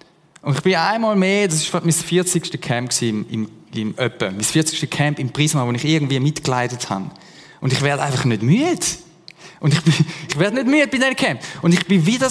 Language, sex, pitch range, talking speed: German, male, 145-180 Hz, 215 wpm